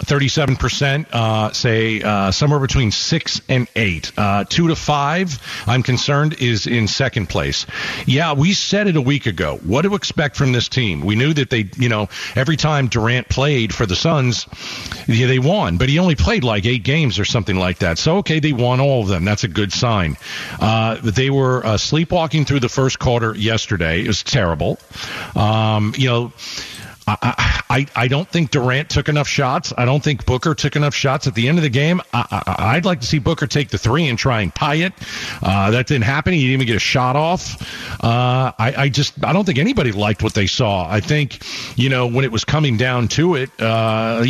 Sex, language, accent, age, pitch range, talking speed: male, English, American, 50-69, 110-145 Hz, 215 wpm